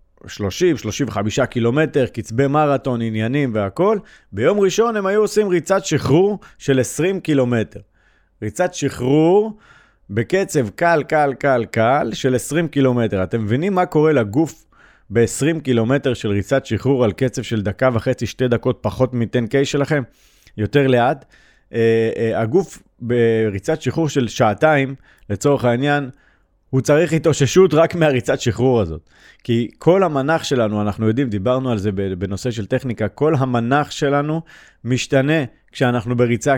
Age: 30-49